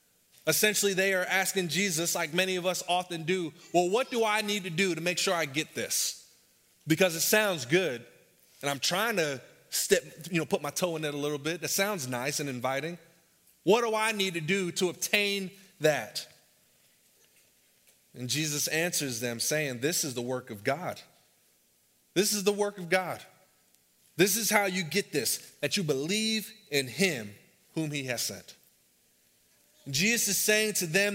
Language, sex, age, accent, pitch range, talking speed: English, male, 30-49, American, 150-205 Hz, 180 wpm